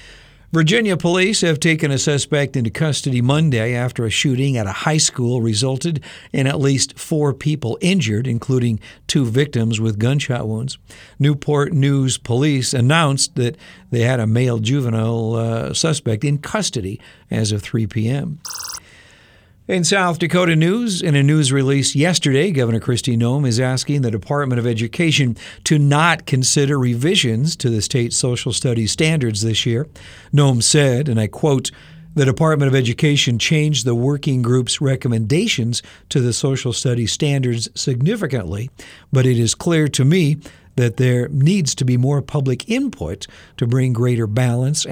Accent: American